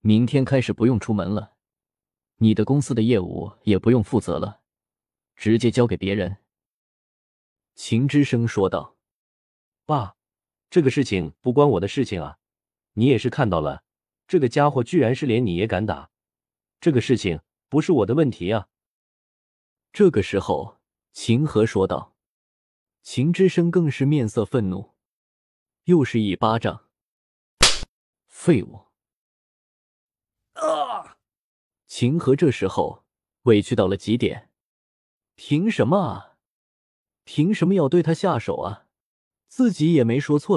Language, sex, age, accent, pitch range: Chinese, male, 20-39, native, 95-150 Hz